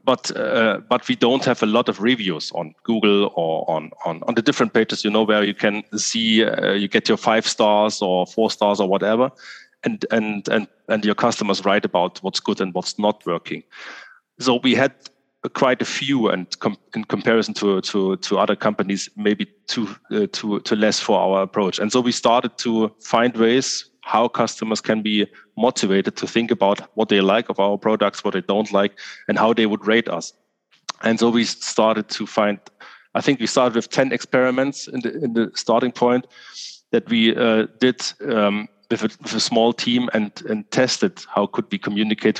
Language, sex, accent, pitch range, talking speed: English, male, German, 100-115 Hz, 195 wpm